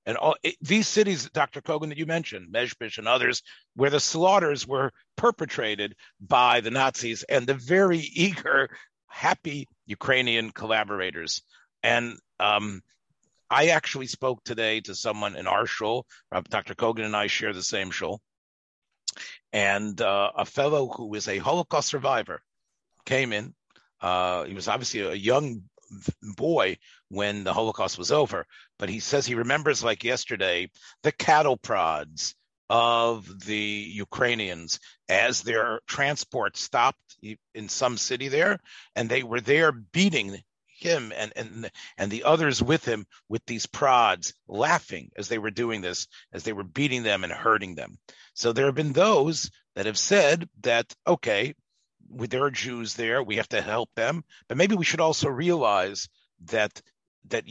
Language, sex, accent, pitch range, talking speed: English, male, American, 105-145 Hz, 155 wpm